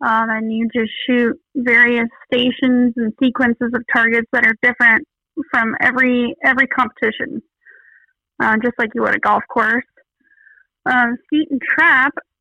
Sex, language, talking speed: female, English, 145 wpm